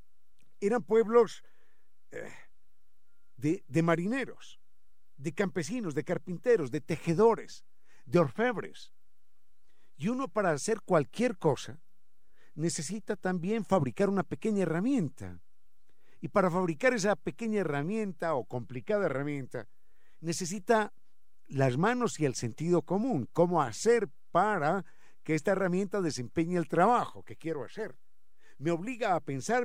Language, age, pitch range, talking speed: Spanish, 50-69, 155-210 Hz, 115 wpm